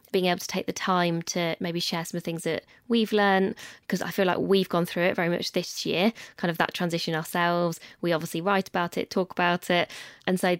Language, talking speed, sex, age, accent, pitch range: English, 245 wpm, female, 20-39, British, 165-190 Hz